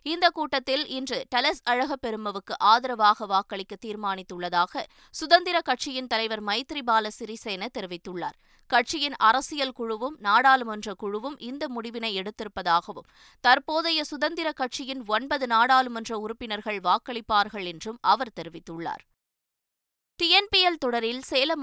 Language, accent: Tamil, native